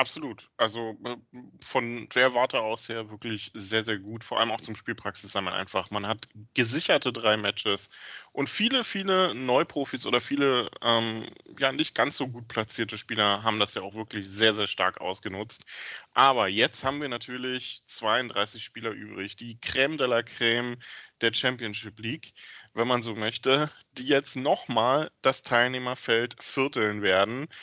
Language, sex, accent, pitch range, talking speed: German, male, German, 110-140 Hz, 155 wpm